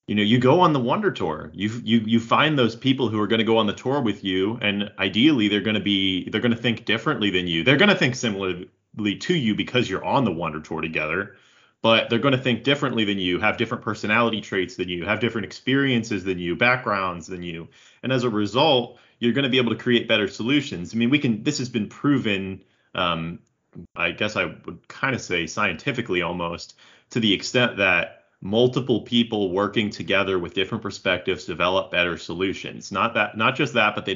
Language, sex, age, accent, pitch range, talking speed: English, male, 30-49, American, 95-120 Hz, 220 wpm